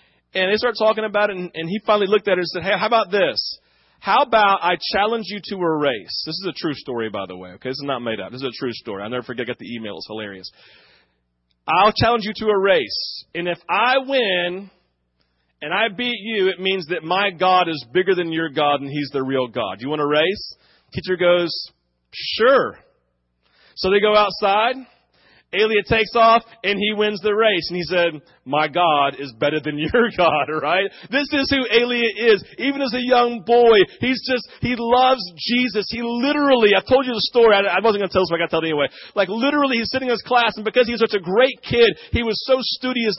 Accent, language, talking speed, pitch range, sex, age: American, English, 235 wpm, 170-235 Hz, male, 40-59